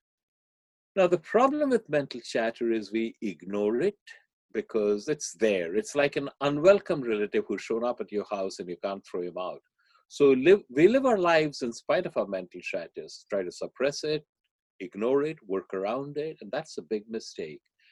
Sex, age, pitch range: male, 50-69, 100-160 Hz